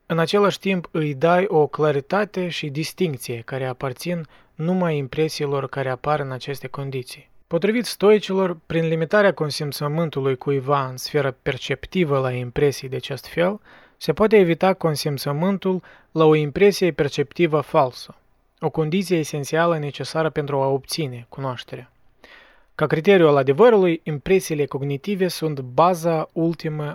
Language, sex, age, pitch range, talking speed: Romanian, male, 20-39, 140-170 Hz, 130 wpm